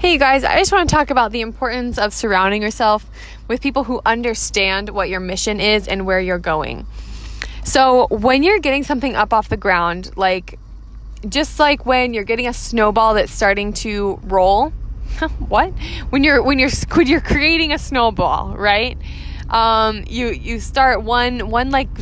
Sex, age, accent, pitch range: female, 20-39, American, 205-255 Hz